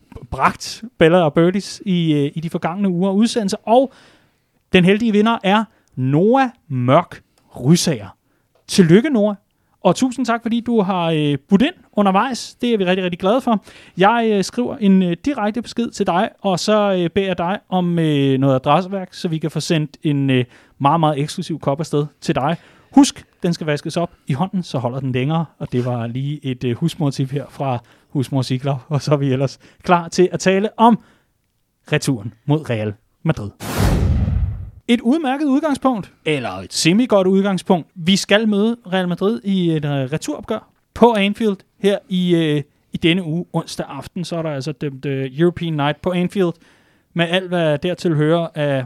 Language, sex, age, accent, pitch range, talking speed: Danish, male, 30-49, native, 140-200 Hz, 175 wpm